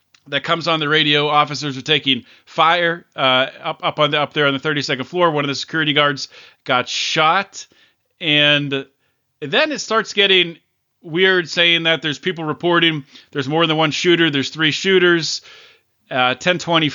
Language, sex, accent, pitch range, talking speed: English, male, American, 140-165 Hz, 175 wpm